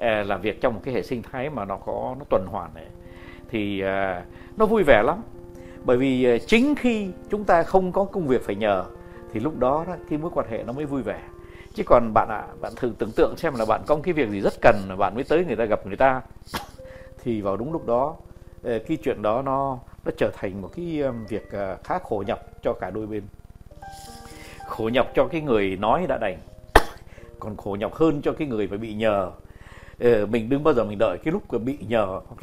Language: Vietnamese